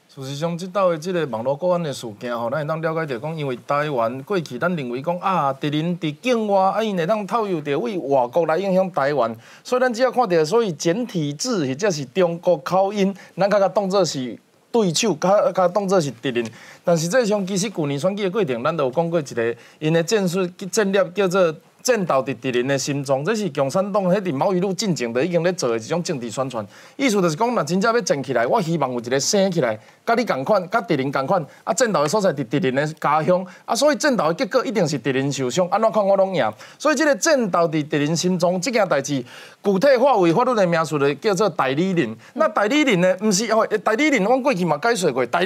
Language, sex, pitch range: Chinese, male, 145-205 Hz